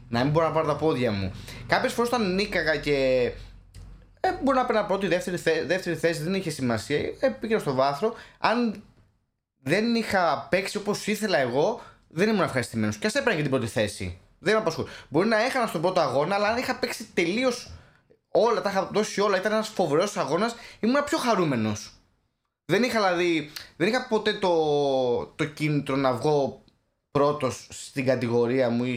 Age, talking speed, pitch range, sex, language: 20-39, 180 wpm, 135-215 Hz, male, Greek